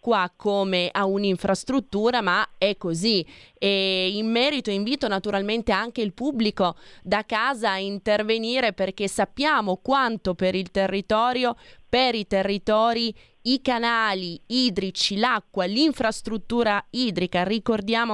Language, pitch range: Italian, 190-230 Hz